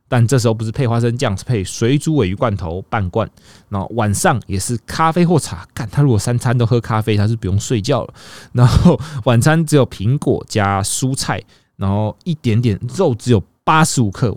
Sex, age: male, 20-39